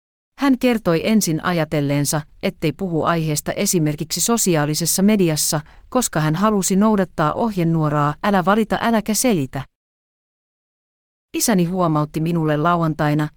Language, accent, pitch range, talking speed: Finnish, native, 150-185 Hz, 105 wpm